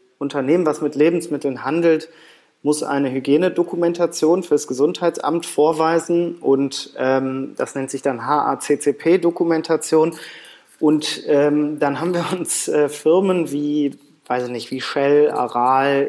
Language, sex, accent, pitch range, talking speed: German, male, German, 140-165 Hz, 120 wpm